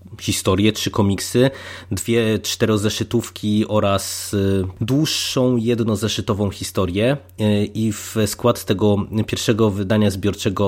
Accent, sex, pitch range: native, male, 100-120 Hz